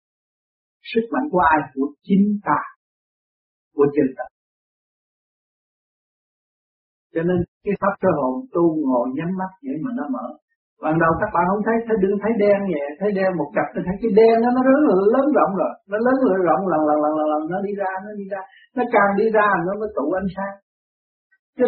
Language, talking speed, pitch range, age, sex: Vietnamese, 200 wpm, 180-245 Hz, 60-79, male